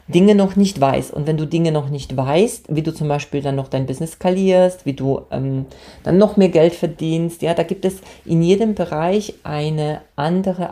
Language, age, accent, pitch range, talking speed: German, 40-59, German, 140-185 Hz, 205 wpm